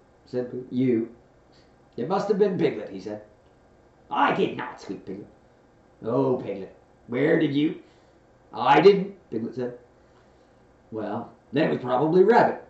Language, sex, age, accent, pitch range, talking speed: English, male, 40-59, American, 115-185 Hz, 135 wpm